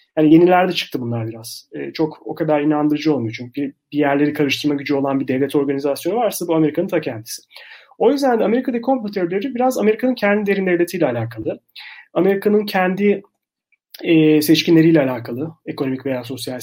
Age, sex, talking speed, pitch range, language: 30-49, male, 160 wpm, 135-175 Hz, Turkish